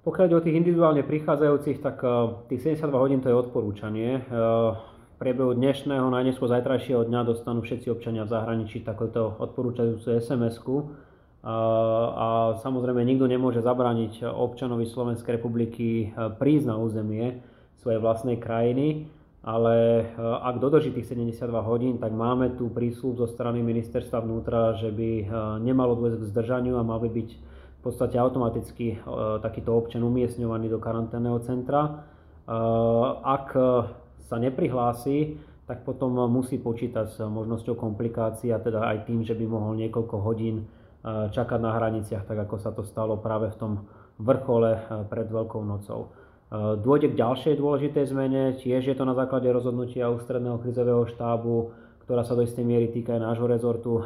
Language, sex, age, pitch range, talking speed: Slovak, male, 20-39, 115-125 Hz, 155 wpm